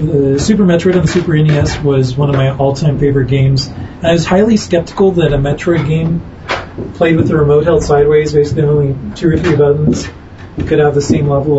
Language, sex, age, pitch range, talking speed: English, male, 40-59, 135-155 Hz, 210 wpm